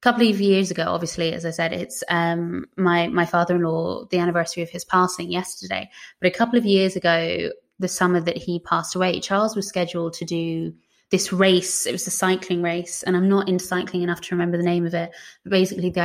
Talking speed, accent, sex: 215 wpm, British, female